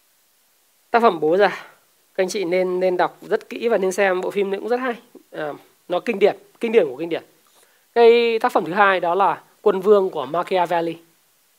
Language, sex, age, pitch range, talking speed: Vietnamese, male, 20-39, 185-280 Hz, 205 wpm